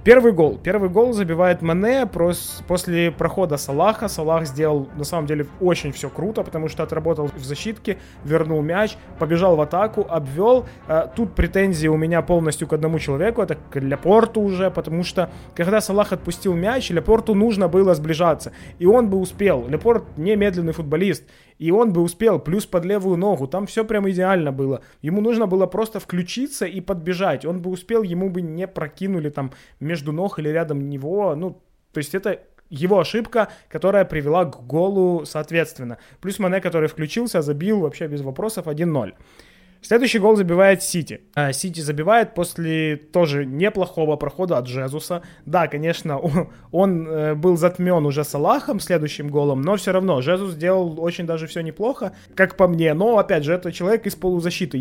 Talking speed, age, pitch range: 165 wpm, 20-39, 155-190 Hz